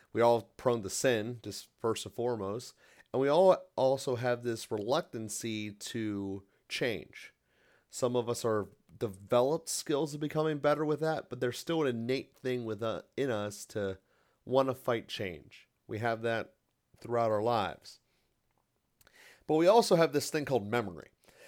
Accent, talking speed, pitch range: American, 160 wpm, 110-135 Hz